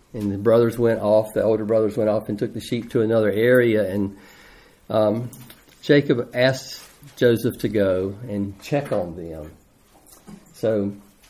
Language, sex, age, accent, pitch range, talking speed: English, male, 50-69, American, 100-130 Hz, 155 wpm